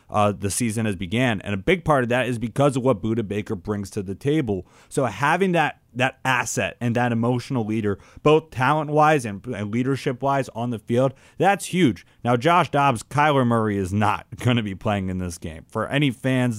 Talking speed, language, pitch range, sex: 210 wpm, English, 110-145 Hz, male